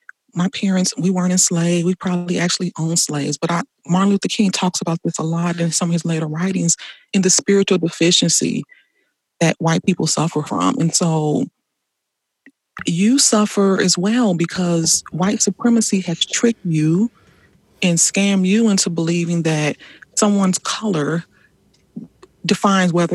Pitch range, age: 170-200 Hz, 30-49